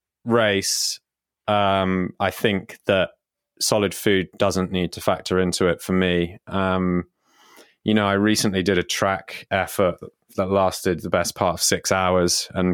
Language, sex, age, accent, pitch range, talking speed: English, male, 20-39, British, 90-105 Hz, 155 wpm